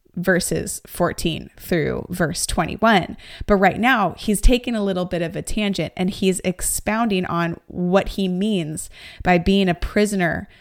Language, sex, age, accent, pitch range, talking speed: English, female, 20-39, American, 175-210 Hz, 155 wpm